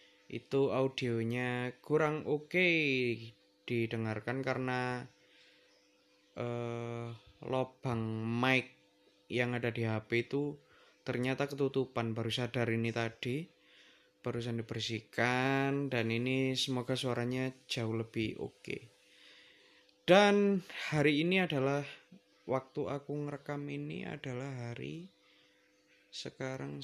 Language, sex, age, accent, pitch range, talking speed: Indonesian, male, 20-39, native, 110-135 Hz, 95 wpm